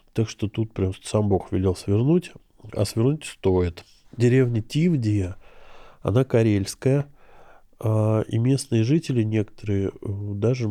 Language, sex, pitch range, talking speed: Russian, male, 100-125 Hz, 110 wpm